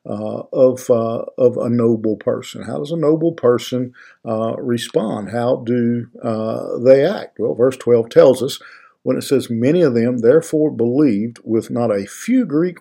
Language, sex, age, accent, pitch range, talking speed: English, male, 50-69, American, 115-140 Hz, 175 wpm